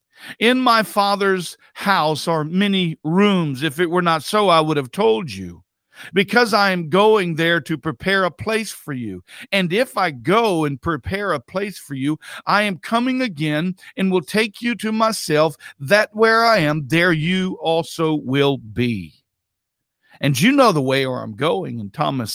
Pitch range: 135-190 Hz